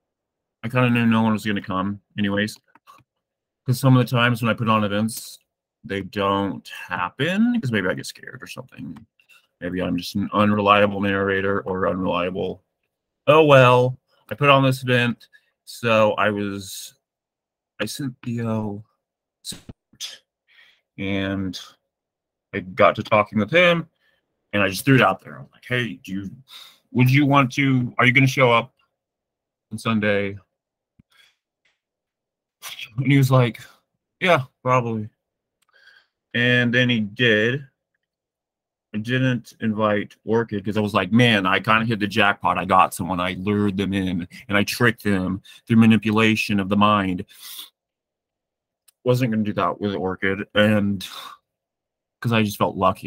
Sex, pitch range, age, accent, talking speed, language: male, 100-125 Hz, 30-49, American, 155 wpm, English